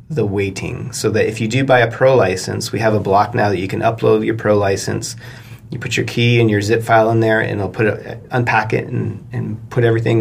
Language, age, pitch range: English, 30-49, 100-120 Hz